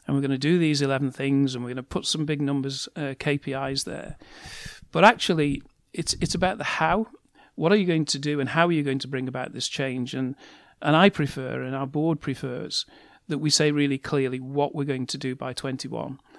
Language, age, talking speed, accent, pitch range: English, 40-59, 225 wpm, British, 130-155 Hz